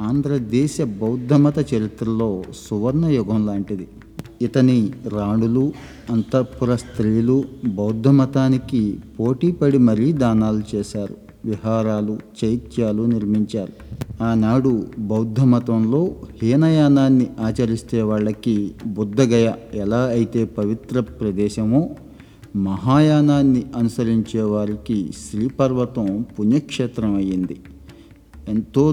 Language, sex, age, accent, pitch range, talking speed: Telugu, male, 50-69, native, 105-125 Hz, 75 wpm